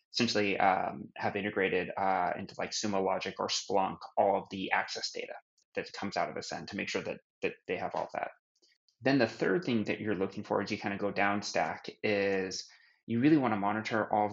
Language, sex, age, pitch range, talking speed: English, male, 20-39, 100-115 Hz, 220 wpm